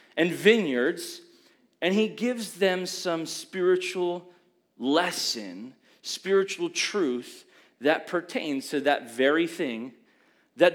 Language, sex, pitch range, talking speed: English, male, 185-245 Hz, 100 wpm